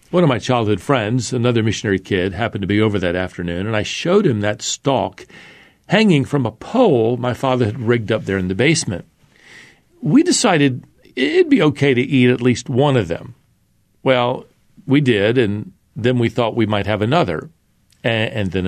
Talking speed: 185 wpm